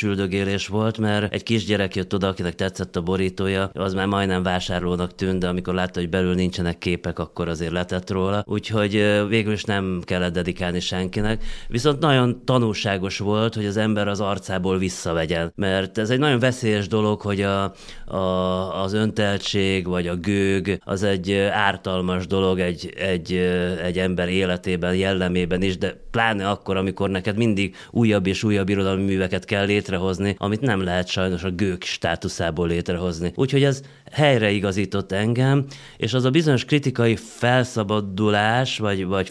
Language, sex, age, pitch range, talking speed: Hungarian, male, 30-49, 95-115 Hz, 155 wpm